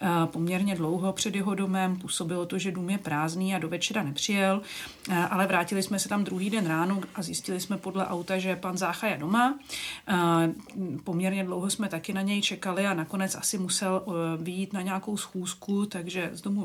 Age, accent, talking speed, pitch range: 40-59, native, 185 wpm, 175-200 Hz